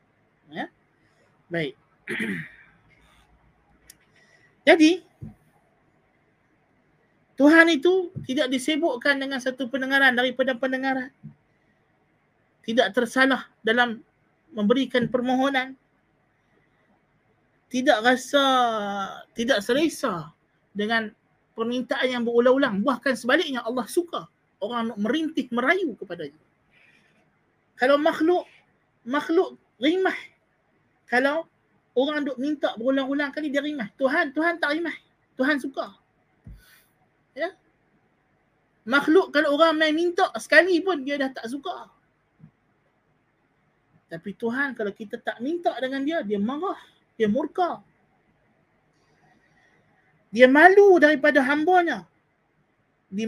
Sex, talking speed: male, 90 wpm